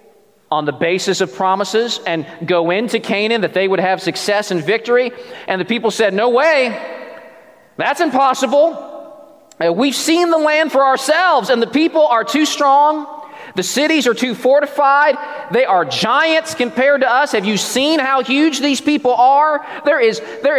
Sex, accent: male, American